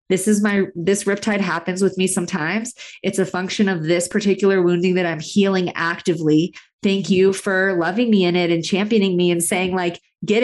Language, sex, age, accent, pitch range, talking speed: English, female, 20-39, American, 175-215 Hz, 195 wpm